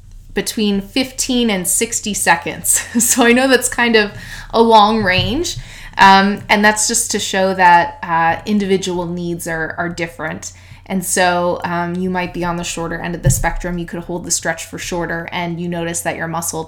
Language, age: English, 20-39